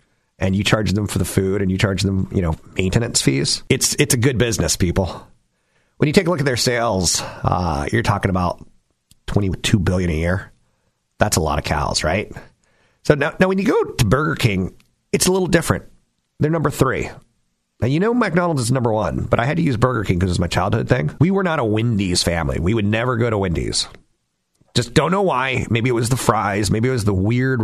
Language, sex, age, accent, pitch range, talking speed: English, male, 30-49, American, 90-130 Hz, 230 wpm